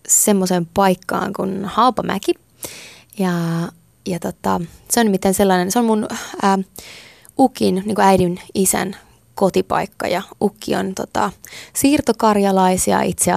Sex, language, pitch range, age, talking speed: female, Finnish, 180-200 Hz, 20-39, 110 wpm